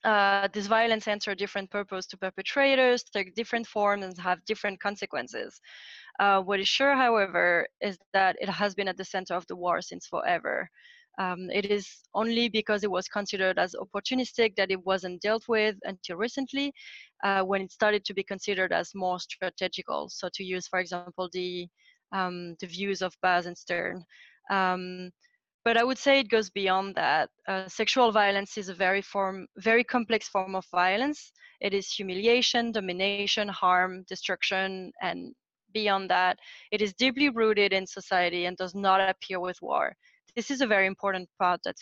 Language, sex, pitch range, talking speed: English, female, 185-220 Hz, 175 wpm